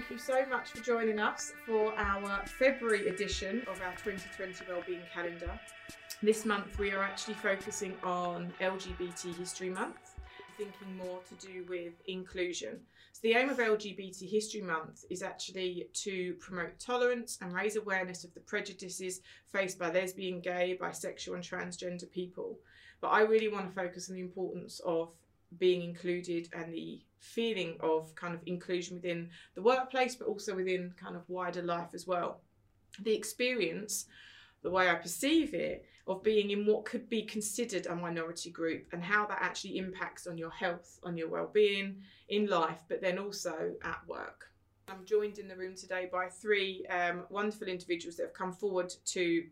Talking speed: 170 wpm